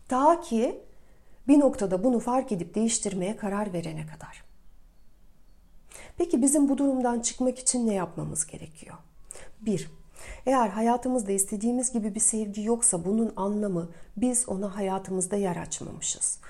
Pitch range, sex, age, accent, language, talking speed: 185-230 Hz, female, 40-59, native, Turkish, 125 wpm